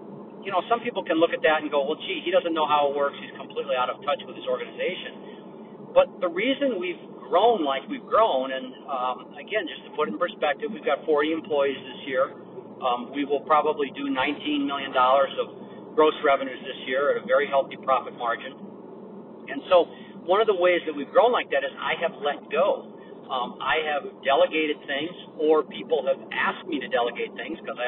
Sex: male